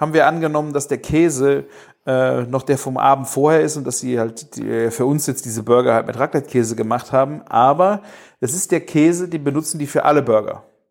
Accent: German